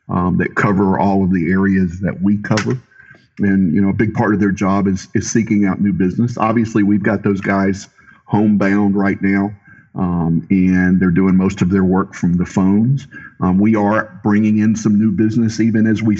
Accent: American